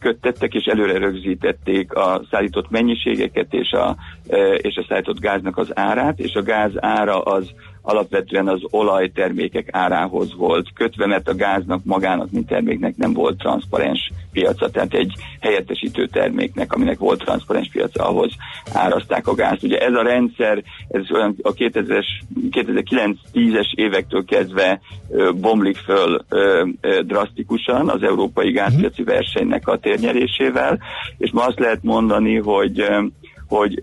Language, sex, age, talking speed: Hungarian, male, 50-69, 130 wpm